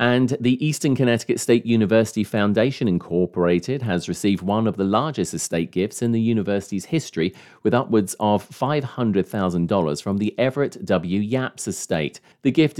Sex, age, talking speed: male, 40-59, 150 wpm